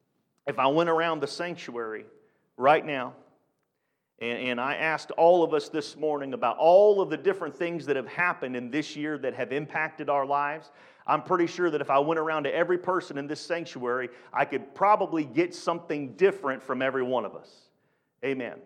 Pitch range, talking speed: 145-180 Hz, 195 wpm